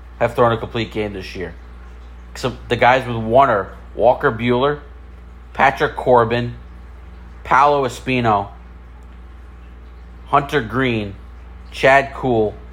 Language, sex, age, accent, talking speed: English, male, 40-59, American, 110 wpm